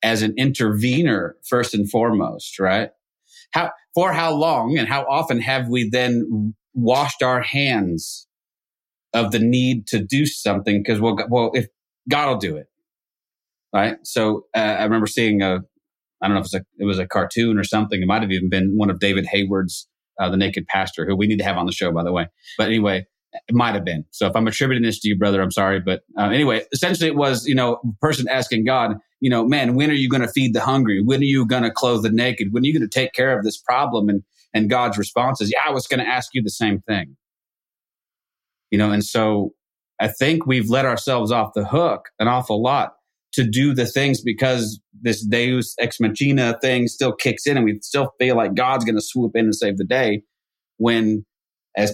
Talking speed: 220 wpm